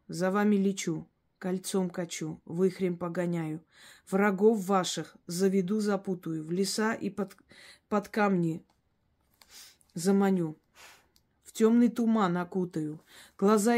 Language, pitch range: Russian, 185-220 Hz